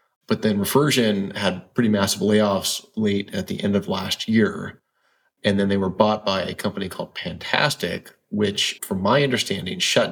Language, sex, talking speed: English, male, 170 wpm